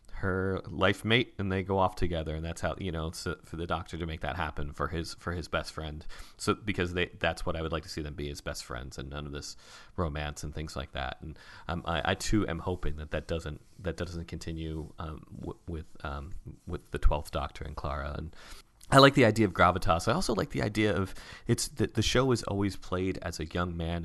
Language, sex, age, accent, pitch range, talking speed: English, male, 30-49, American, 80-95 Hz, 245 wpm